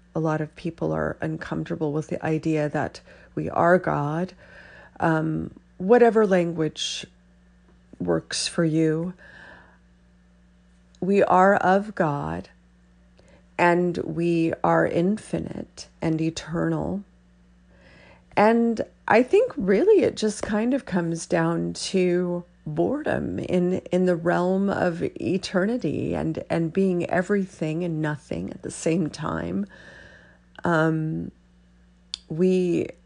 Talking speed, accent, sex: 105 wpm, American, female